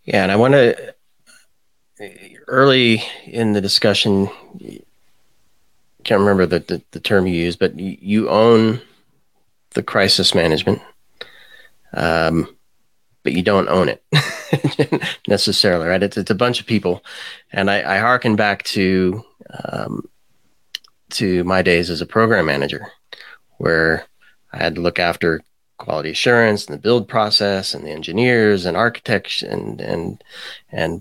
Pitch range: 90-110 Hz